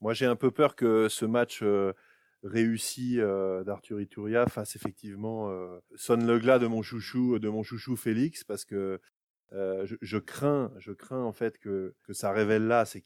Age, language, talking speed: 30-49, French, 195 wpm